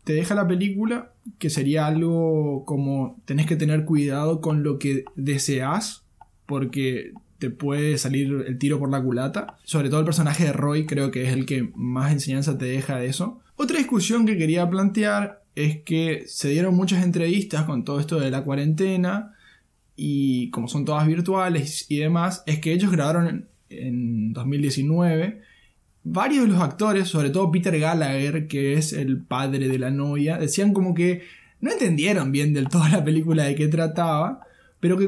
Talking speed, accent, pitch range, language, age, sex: 175 wpm, Argentinian, 145-185 Hz, Spanish, 20-39, male